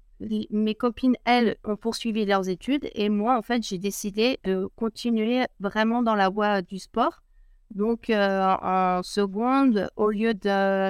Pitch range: 195-230 Hz